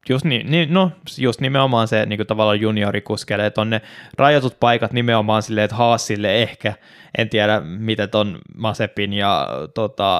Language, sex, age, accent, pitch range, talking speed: Finnish, male, 10-29, native, 100-110 Hz, 140 wpm